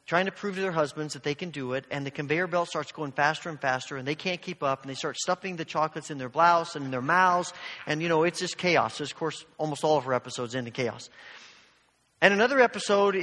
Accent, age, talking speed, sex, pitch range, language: American, 40-59, 265 wpm, male, 150-195 Hz, English